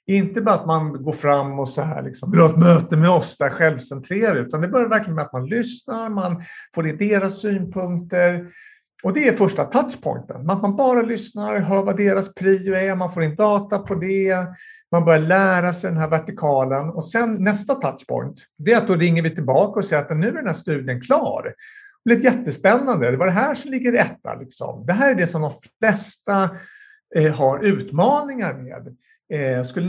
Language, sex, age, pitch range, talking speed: Swedish, male, 50-69, 160-215 Hz, 200 wpm